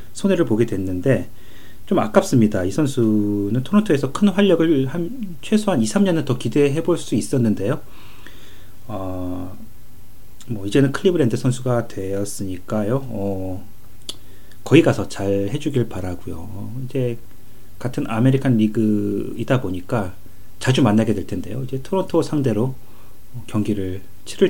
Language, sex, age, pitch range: Korean, male, 30-49, 100-130 Hz